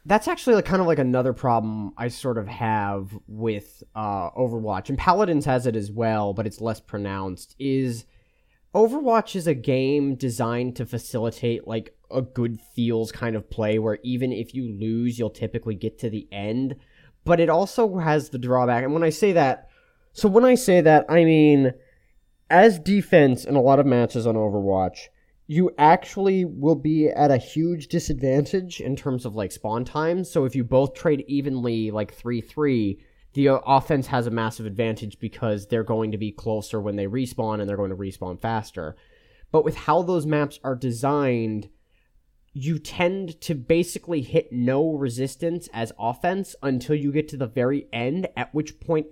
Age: 20-39